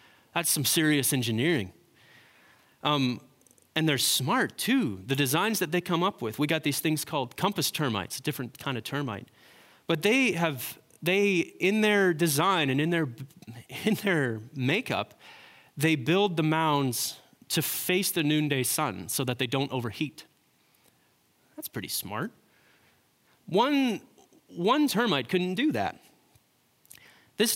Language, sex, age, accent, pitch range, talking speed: English, male, 30-49, American, 120-165 Hz, 140 wpm